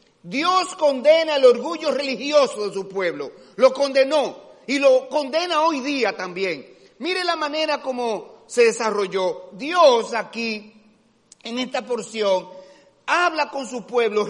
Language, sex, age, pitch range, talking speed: Spanish, male, 40-59, 225-310 Hz, 130 wpm